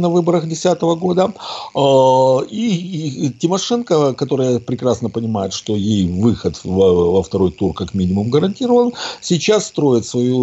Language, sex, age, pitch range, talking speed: Russian, male, 60-79, 100-135 Hz, 125 wpm